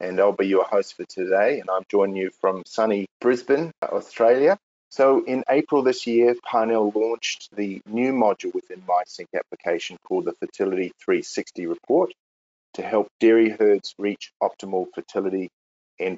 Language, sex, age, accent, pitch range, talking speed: English, male, 40-59, Australian, 95-120 Hz, 150 wpm